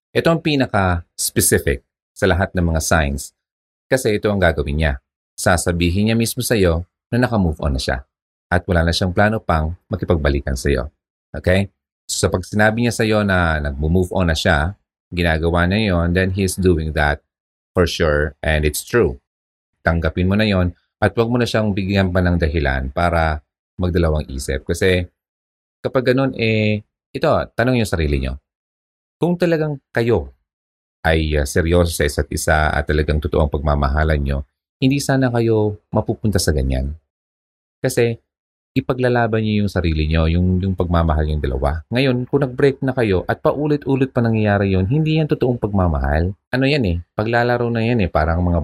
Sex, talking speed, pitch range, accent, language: male, 165 wpm, 75-110 Hz, native, Filipino